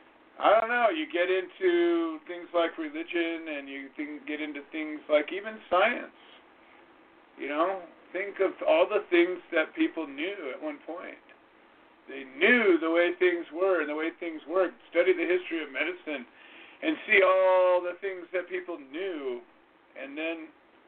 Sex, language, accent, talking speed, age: male, English, American, 160 wpm, 50-69